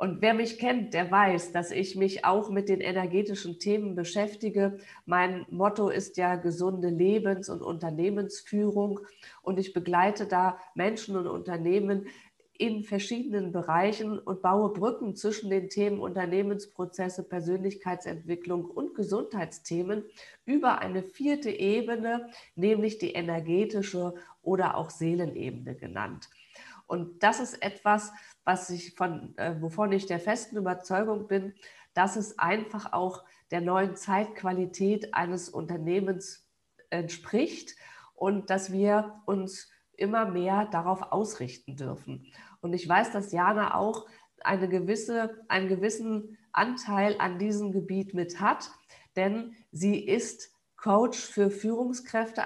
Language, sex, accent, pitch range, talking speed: German, female, German, 180-210 Hz, 125 wpm